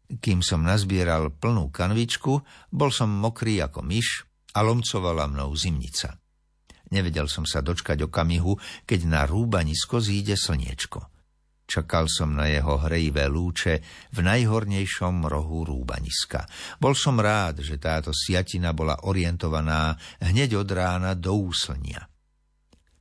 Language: Slovak